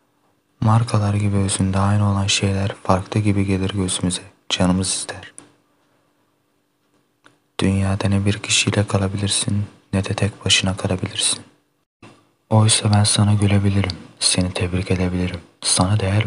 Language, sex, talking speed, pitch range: Turkish, male, 115 wpm, 95-105 Hz